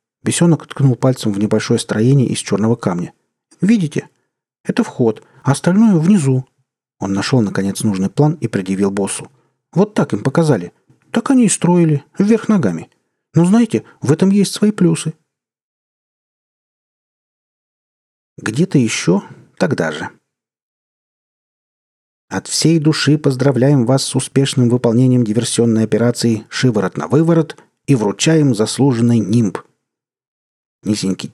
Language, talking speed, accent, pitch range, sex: Russian, 120 wpm, native, 110-155 Hz, male